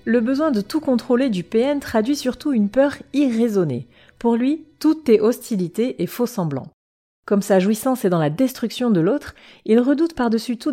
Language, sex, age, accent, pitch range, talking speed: French, female, 30-49, French, 175-240 Hz, 180 wpm